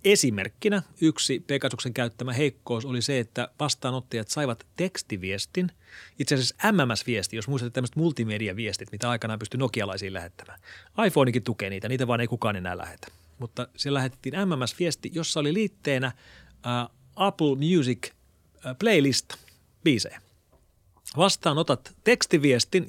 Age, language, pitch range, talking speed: 30-49, Finnish, 115-145 Hz, 125 wpm